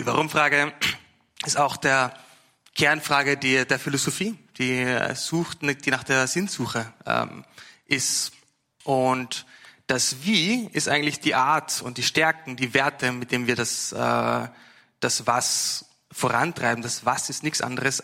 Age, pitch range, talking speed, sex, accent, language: 30-49, 125-155 Hz, 130 wpm, male, German, German